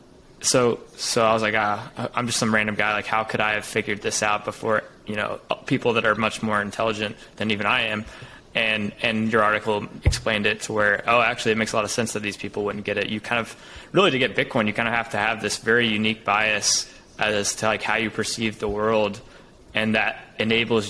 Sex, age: male, 20-39